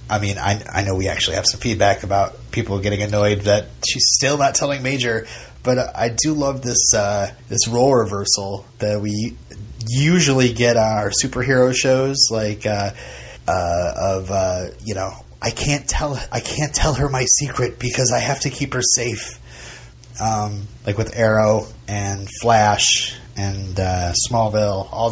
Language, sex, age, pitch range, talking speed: English, male, 30-49, 100-135 Hz, 165 wpm